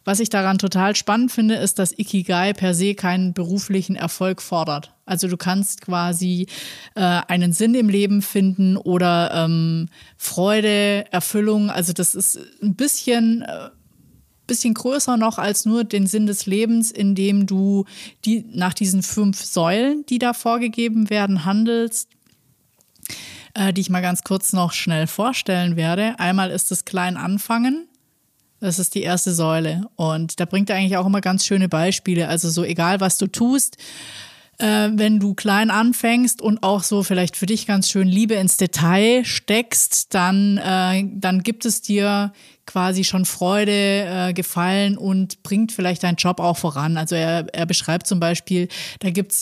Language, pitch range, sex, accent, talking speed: German, 180-210 Hz, female, German, 165 wpm